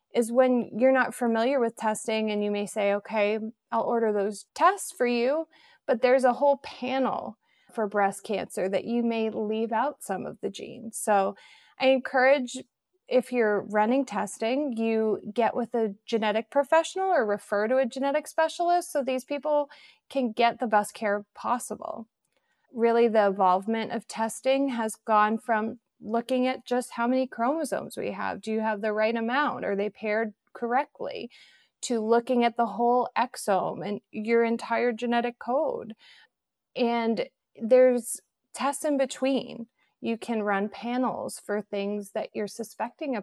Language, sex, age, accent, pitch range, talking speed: English, female, 30-49, American, 215-260 Hz, 160 wpm